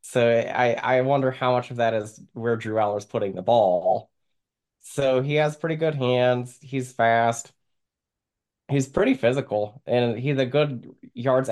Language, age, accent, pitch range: English, 20-39, American, 110-130 Hz